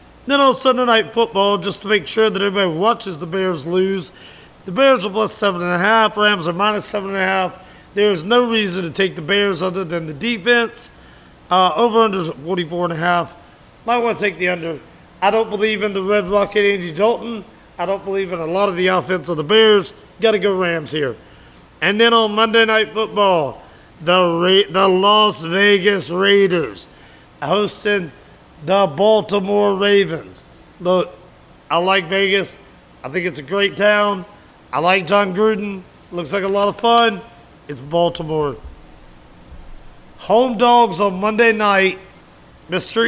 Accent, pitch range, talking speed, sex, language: American, 175-210 Hz, 170 wpm, male, English